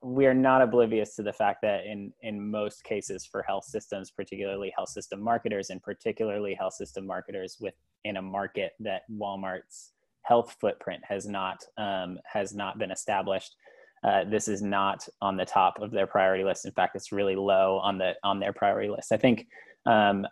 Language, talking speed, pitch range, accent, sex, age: English, 190 wpm, 100-120 Hz, American, male, 20-39